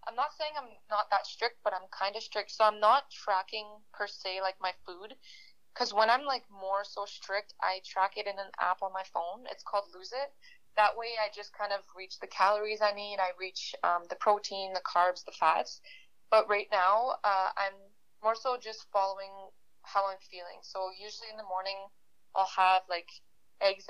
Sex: female